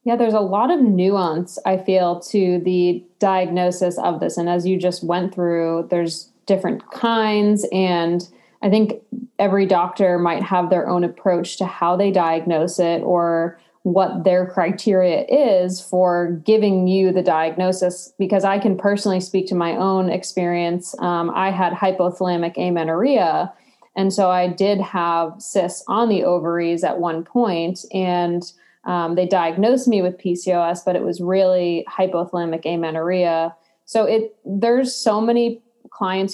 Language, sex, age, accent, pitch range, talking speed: English, female, 20-39, American, 175-200 Hz, 150 wpm